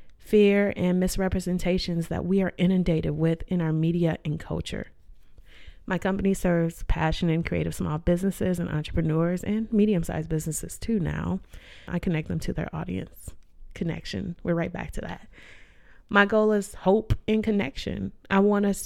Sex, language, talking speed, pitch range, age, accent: female, English, 155 wpm, 160-200 Hz, 30-49, American